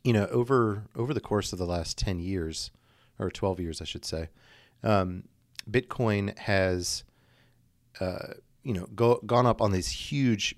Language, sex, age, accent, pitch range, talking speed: English, male, 30-49, American, 90-110 Hz, 165 wpm